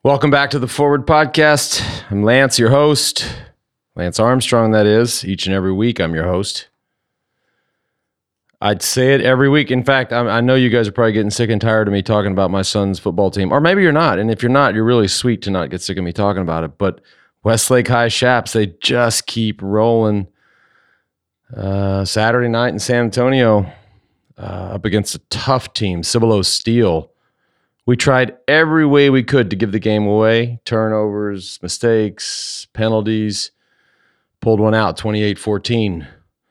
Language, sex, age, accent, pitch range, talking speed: English, male, 40-59, American, 95-120 Hz, 175 wpm